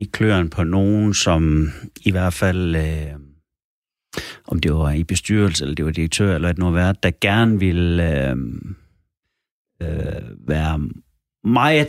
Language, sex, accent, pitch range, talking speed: Danish, male, native, 80-105 Hz, 135 wpm